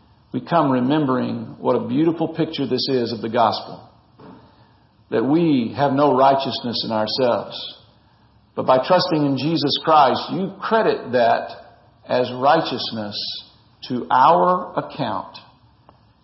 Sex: male